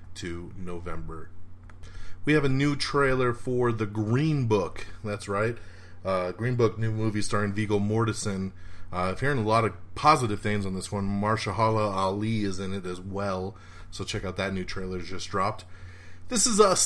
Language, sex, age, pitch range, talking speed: English, male, 30-49, 90-120 Hz, 180 wpm